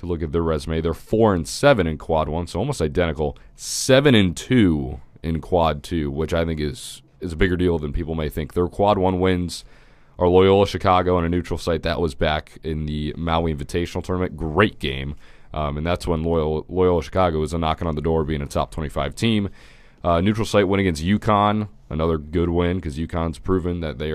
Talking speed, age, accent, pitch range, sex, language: 215 wpm, 30-49, American, 75-95 Hz, male, English